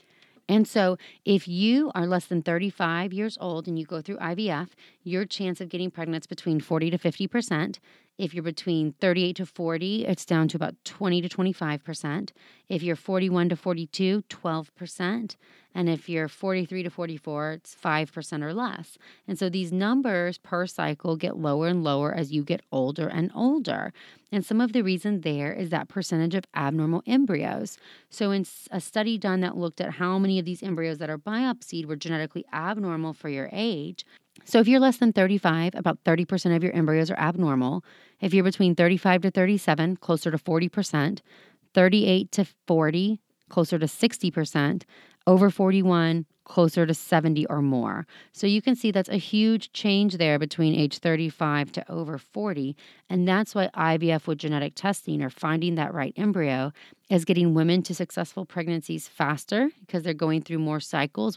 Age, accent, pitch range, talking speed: 30-49, American, 160-190 Hz, 175 wpm